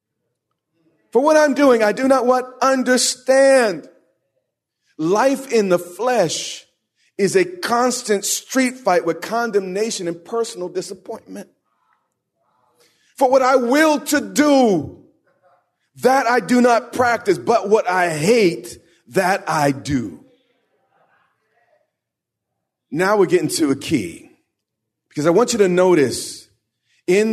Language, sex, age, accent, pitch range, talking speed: English, male, 40-59, American, 150-240 Hz, 120 wpm